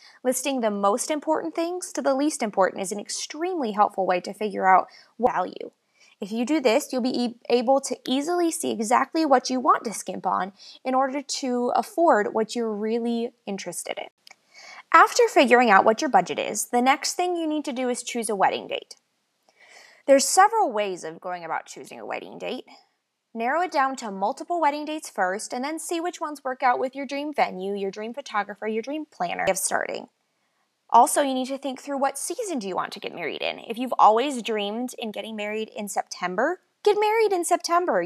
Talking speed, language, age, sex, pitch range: 205 wpm, English, 20-39, female, 220-300 Hz